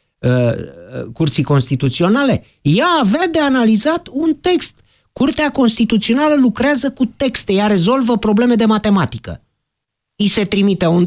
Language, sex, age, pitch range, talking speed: Romanian, male, 50-69, 145-235 Hz, 120 wpm